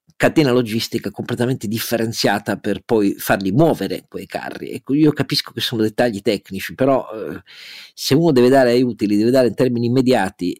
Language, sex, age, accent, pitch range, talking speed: Italian, male, 50-69, native, 100-125 Hz, 170 wpm